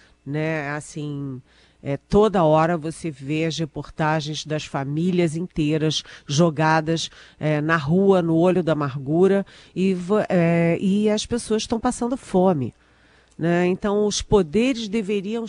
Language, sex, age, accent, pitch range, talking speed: Portuguese, female, 40-59, Brazilian, 160-210 Hz, 110 wpm